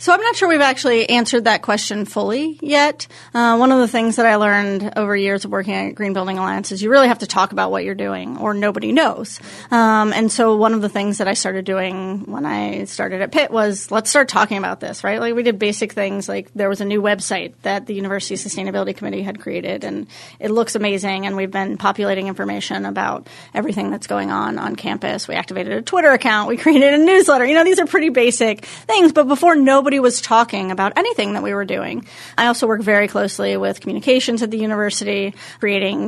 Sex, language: female, English